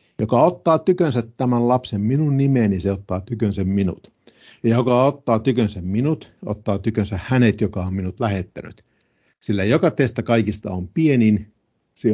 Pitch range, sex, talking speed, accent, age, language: 95-125 Hz, male, 150 wpm, native, 50-69, Finnish